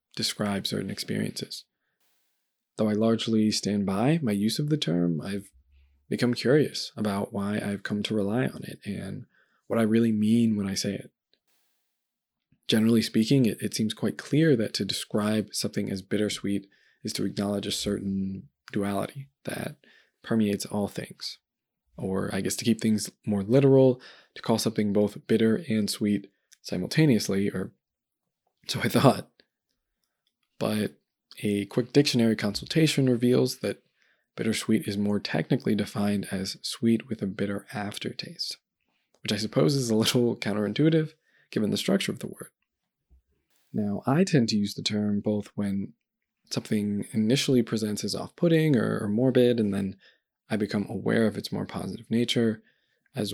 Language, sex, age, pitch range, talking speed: English, male, 20-39, 100-115 Hz, 150 wpm